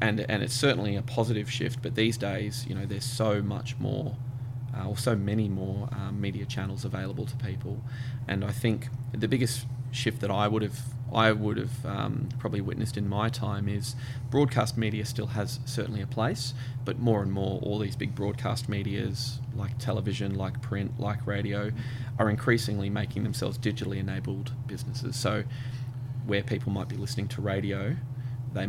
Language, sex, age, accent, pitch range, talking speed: English, male, 20-39, Australian, 110-125 Hz, 175 wpm